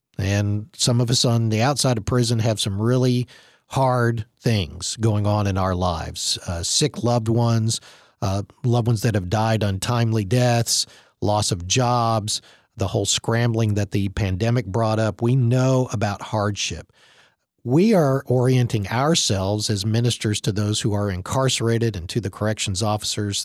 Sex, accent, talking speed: male, American, 160 wpm